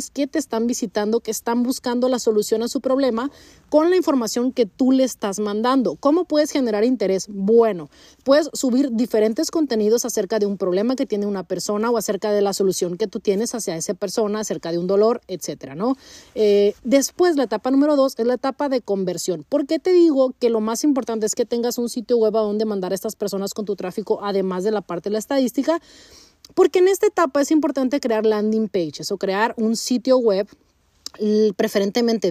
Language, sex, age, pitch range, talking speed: Spanish, female, 30-49, 210-270 Hz, 205 wpm